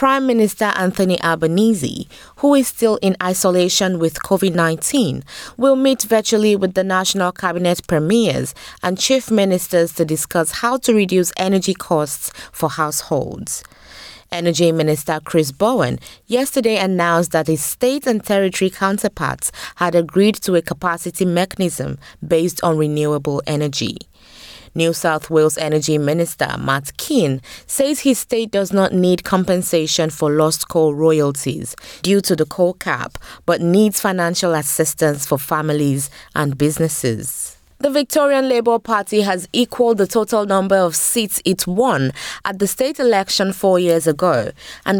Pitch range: 160-200 Hz